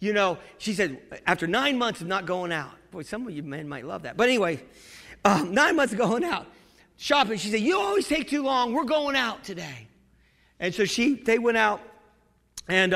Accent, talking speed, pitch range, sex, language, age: American, 215 wpm, 160-210 Hz, male, English, 40-59